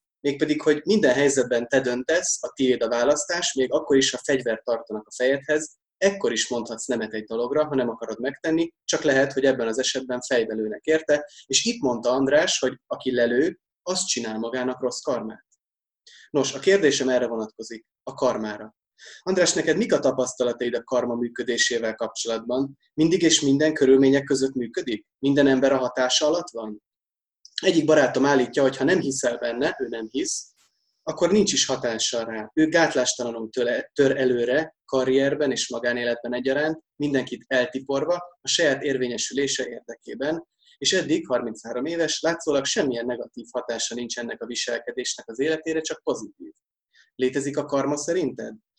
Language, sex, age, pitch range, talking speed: Hungarian, male, 20-39, 120-150 Hz, 155 wpm